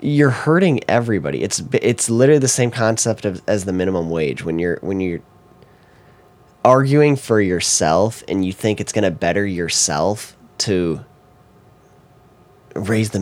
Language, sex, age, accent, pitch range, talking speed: English, male, 10-29, American, 85-105 Hz, 145 wpm